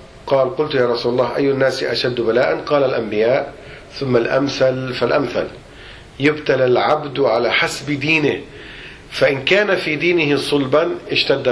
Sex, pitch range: male, 120-150 Hz